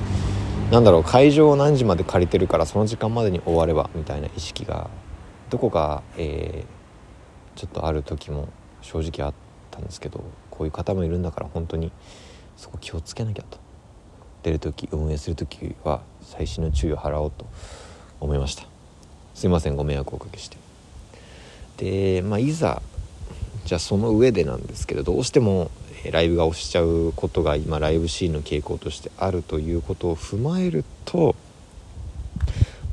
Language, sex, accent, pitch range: Japanese, male, native, 80-105 Hz